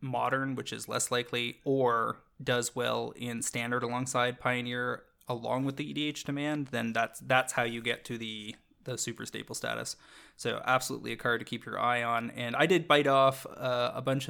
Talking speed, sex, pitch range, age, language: 195 wpm, male, 120-135 Hz, 20-39, English